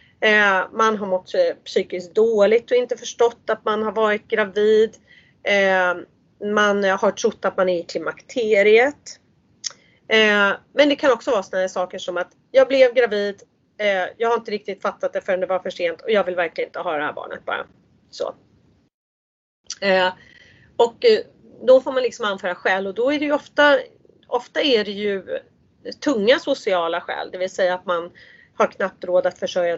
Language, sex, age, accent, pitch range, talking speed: English, female, 30-49, Swedish, 190-265 Hz, 170 wpm